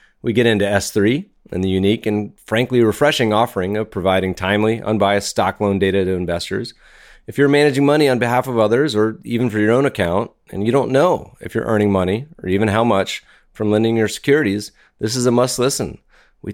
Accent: American